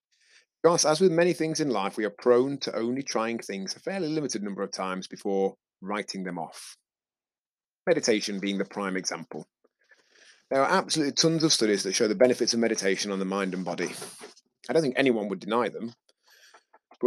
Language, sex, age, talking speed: English, male, 30-49, 190 wpm